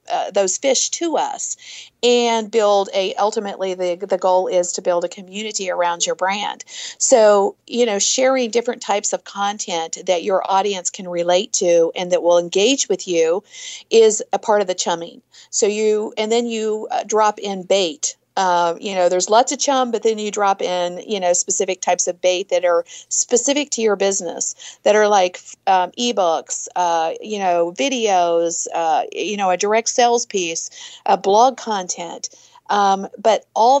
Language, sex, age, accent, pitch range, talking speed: English, female, 50-69, American, 180-240 Hz, 180 wpm